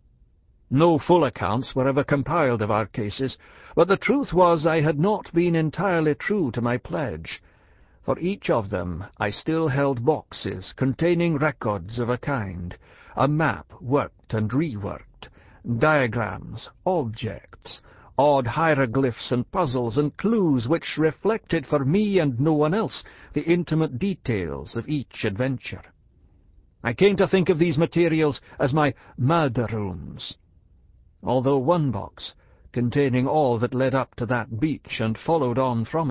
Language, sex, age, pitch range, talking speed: English, male, 60-79, 105-155 Hz, 145 wpm